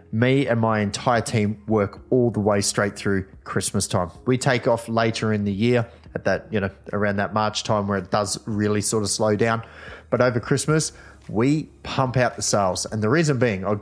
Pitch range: 105-145 Hz